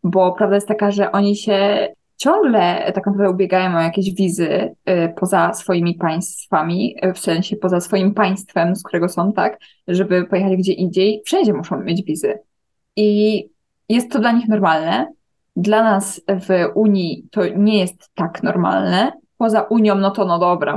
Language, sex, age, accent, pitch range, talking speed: Polish, female, 20-39, native, 185-215 Hz, 155 wpm